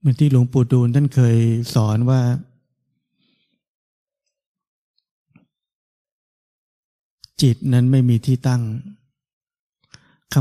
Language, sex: Thai, male